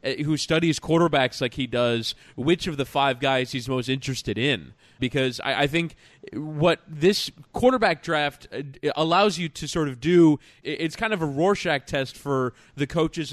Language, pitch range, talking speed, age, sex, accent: English, 130-160 Hz, 170 wpm, 20-39, male, American